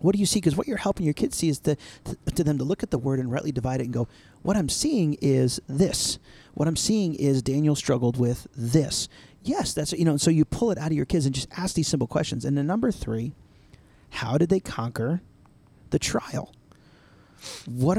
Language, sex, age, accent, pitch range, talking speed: English, male, 40-59, American, 125-175 Hz, 235 wpm